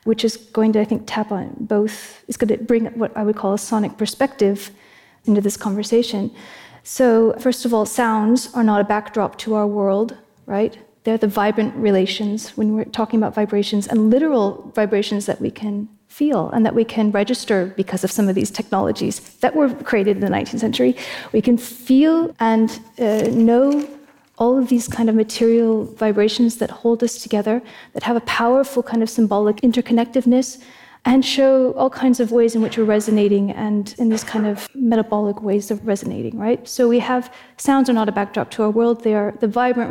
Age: 30-49